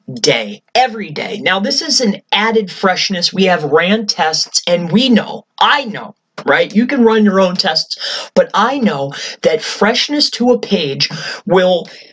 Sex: male